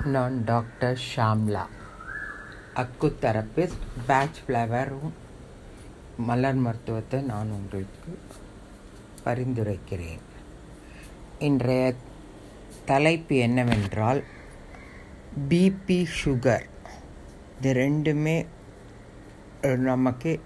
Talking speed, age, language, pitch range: 55 wpm, 50-69, Tamil, 120-160 Hz